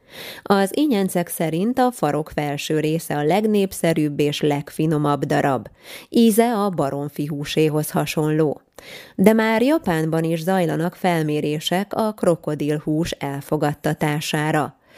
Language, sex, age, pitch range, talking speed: Hungarian, female, 20-39, 150-180 Hz, 105 wpm